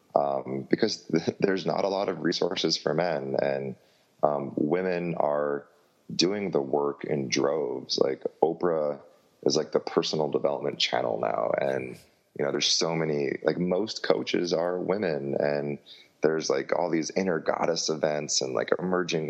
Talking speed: 155 wpm